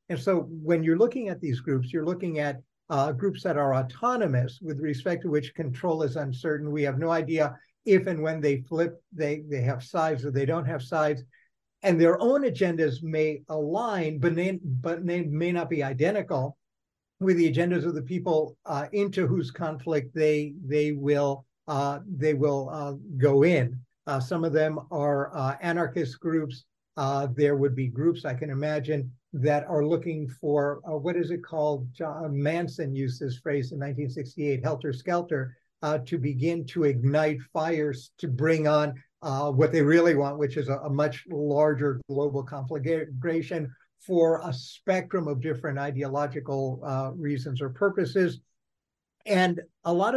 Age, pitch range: 60-79, 140-165 Hz